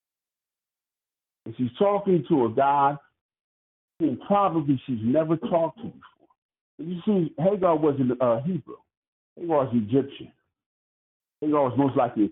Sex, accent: male, American